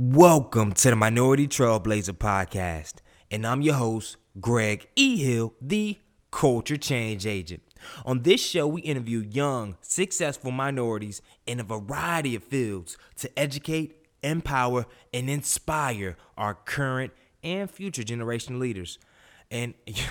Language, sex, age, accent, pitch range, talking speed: English, male, 20-39, American, 115-145 Hz, 125 wpm